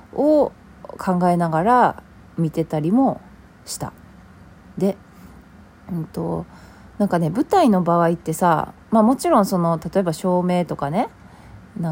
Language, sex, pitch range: Japanese, female, 160-225 Hz